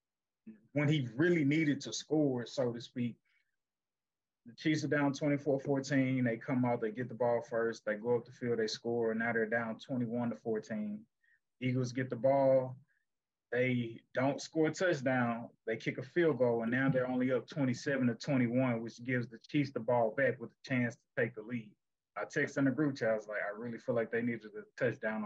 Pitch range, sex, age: 115-135 Hz, male, 20-39